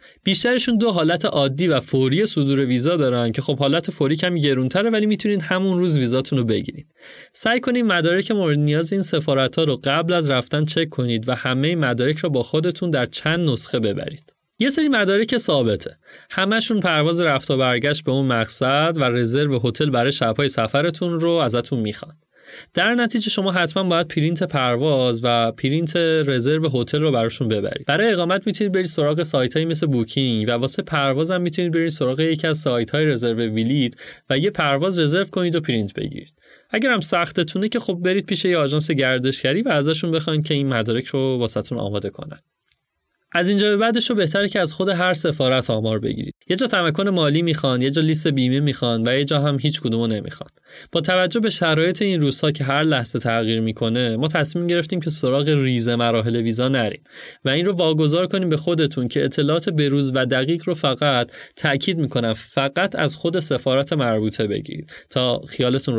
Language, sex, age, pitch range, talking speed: Persian, male, 30-49, 130-175 Hz, 185 wpm